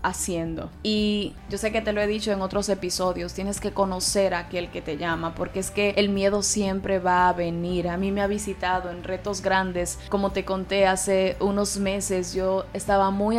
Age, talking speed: 20-39, 205 wpm